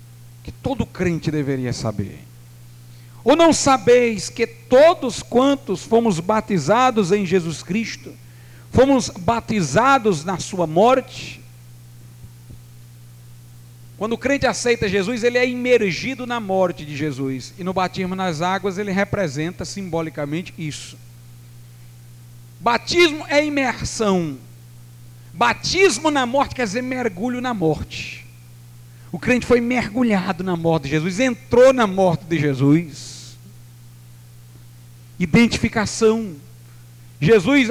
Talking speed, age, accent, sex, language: 105 wpm, 50-69, Brazilian, male, Portuguese